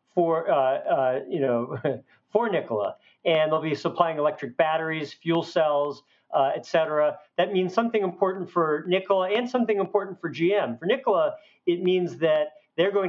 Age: 50-69